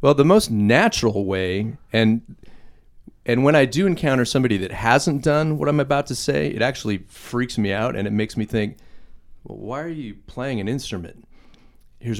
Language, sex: English, male